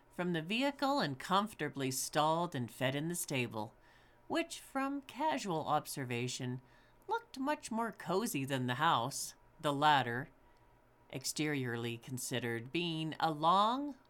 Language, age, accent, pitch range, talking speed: English, 50-69, American, 125-175 Hz, 125 wpm